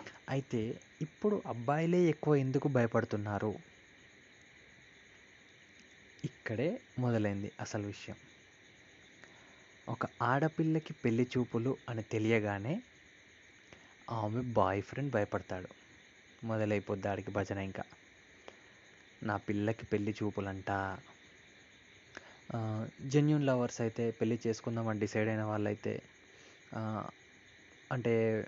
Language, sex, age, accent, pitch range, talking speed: Telugu, male, 20-39, native, 105-125 Hz, 80 wpm